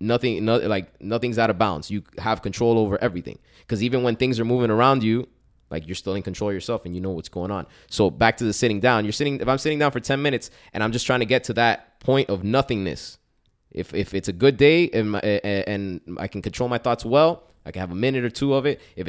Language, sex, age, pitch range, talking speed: English, male, 20-39, 100-125 Hz, 260 wpm